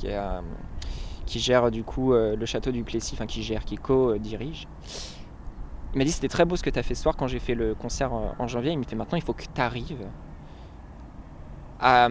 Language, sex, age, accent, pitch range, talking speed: French, male, 20-39, French, 105-135 Hz, 240 wpm